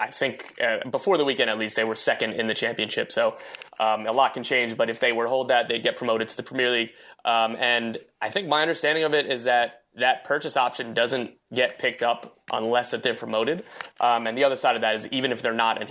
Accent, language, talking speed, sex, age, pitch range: American, English, 255 wpm, male, 20-39, 115-130 Hz